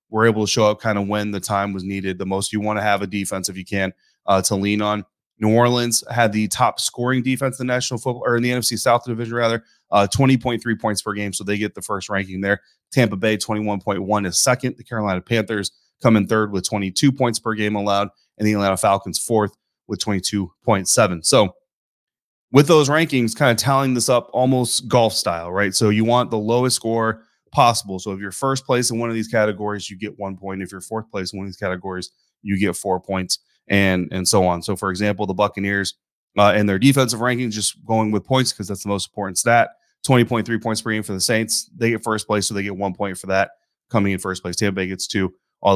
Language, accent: English, American